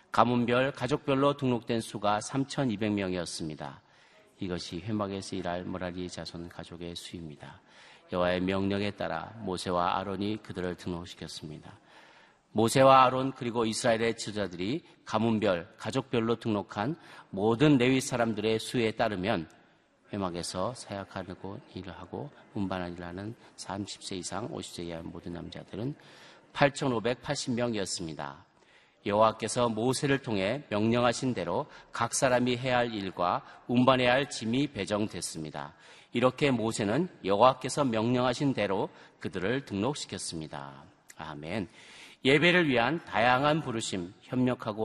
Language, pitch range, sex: Korean, 90-125 Hz, male